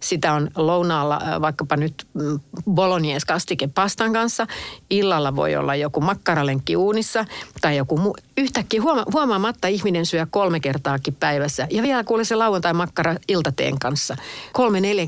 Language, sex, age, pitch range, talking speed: Finnish, female, 60-79, 150-215 Hz, 125 wpm